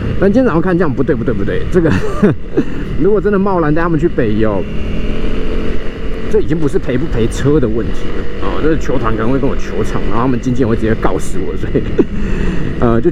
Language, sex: Chinese, male